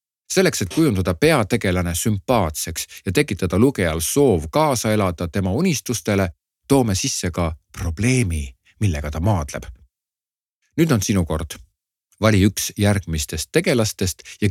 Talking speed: 120 wpm